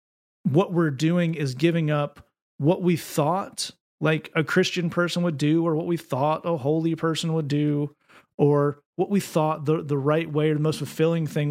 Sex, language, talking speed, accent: male, English, 195 wpm, American